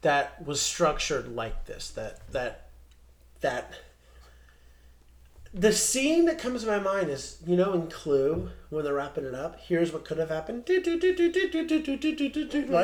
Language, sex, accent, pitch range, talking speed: English, male, American, 115-190 Hz, 140 wpm